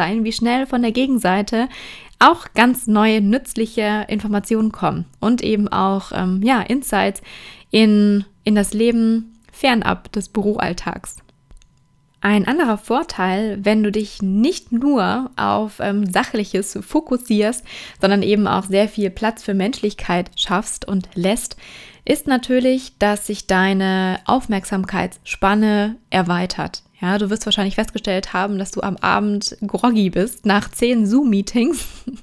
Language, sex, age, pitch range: German, female, 20-39, 190-225 Hz